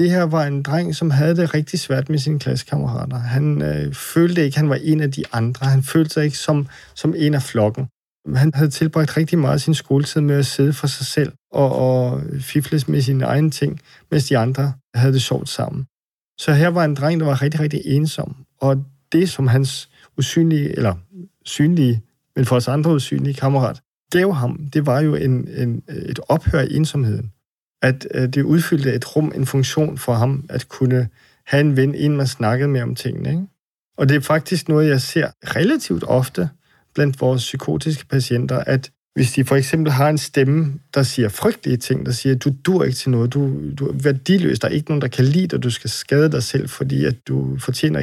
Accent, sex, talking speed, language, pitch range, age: native, male, 210 wpm, Danish, 130-155 Hz, 40-59